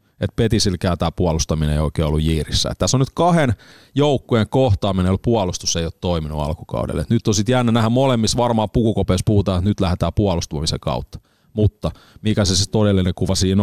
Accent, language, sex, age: native, Finnish, male, 30-49